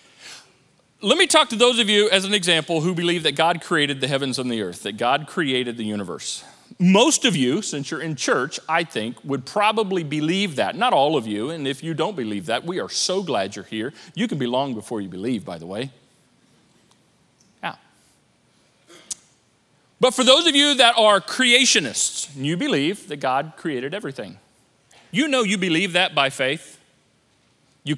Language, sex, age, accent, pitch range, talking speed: English, male, 40-59, American, 160-240 Hz, 185 wpm